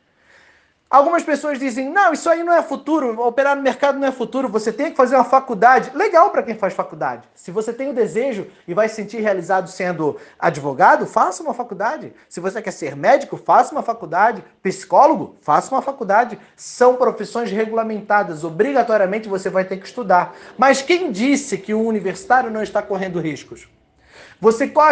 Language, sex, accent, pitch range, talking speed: Portuguese, male, Brazilian, 205-265 Hz, 180 wpm